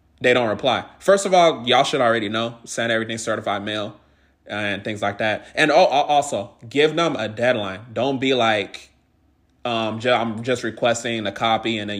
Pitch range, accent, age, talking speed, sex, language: 110-145 Hz, American, 20-39, 175 wpm, male, English